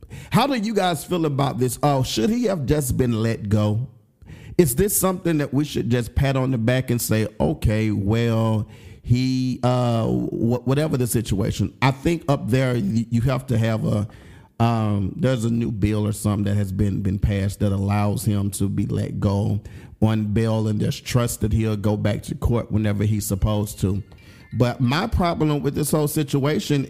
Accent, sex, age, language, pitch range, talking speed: American, male, 40-59, English, 110-140 Hz, 190 wpm